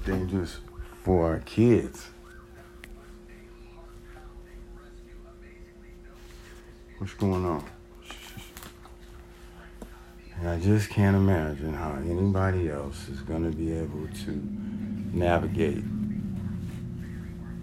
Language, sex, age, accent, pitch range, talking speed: English, male, 60-79, American, 70-90 Hz, 70 wpm